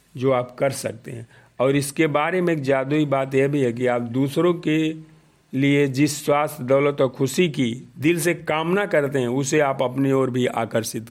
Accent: native